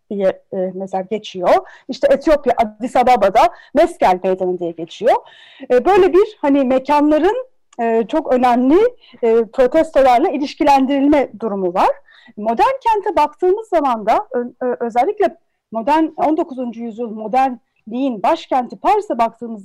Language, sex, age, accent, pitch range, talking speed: Turkish, female, 40-59, native, 250-355 Hz, 115 wpm